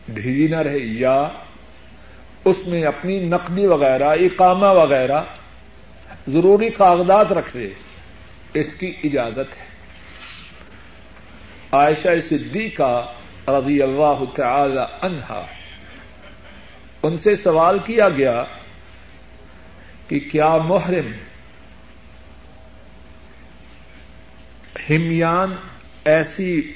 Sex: male